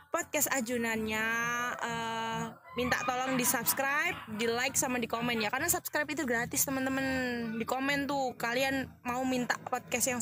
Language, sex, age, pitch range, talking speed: Indonesian, female, 20-39, 225-270 Hz, 155 wpm